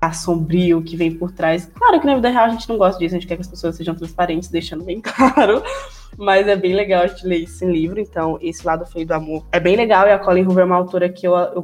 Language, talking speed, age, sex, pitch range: Portuguese, 285 wpm, 10-29, female, 170-195 Hz